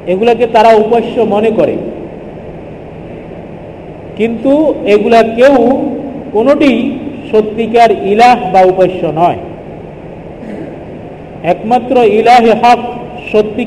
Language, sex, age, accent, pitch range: Bengali, male, 50-69, native, 190-240 Hz